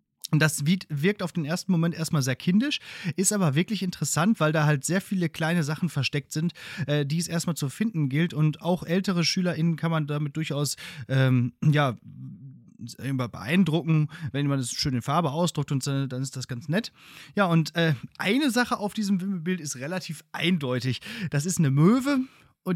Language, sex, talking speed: German, male, 185 wpm